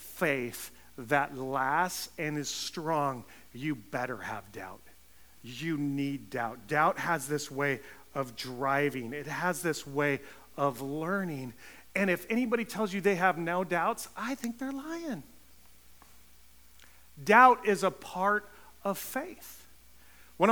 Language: English